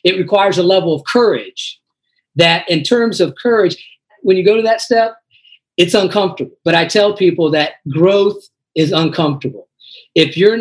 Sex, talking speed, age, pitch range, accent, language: male, 165 wpm, 40-59, 150-205 Hz, American, English